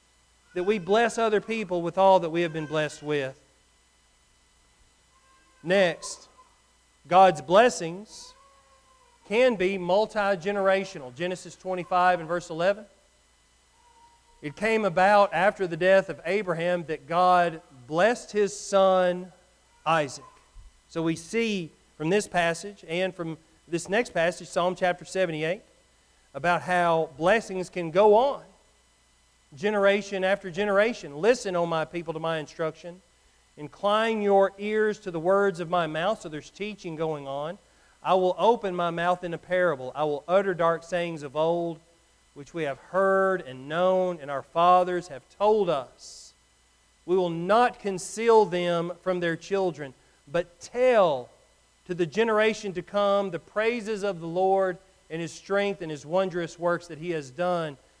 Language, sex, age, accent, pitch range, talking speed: English, male, 40-59, American, 165-200 Hz, 145 wpm